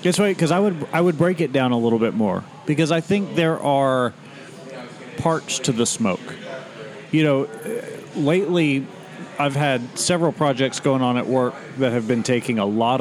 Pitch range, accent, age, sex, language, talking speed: 120-145 Hz, American, 40-59, male, English, 185 wpm